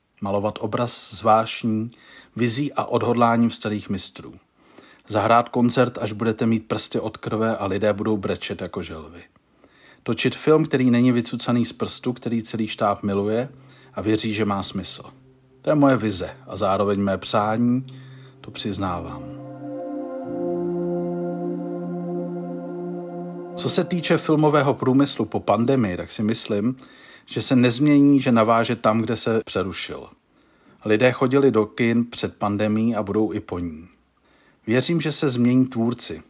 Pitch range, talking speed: 105-125 Hz, 135 wpm